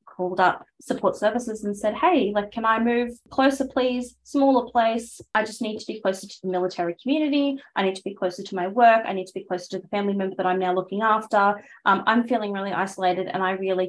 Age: 20-39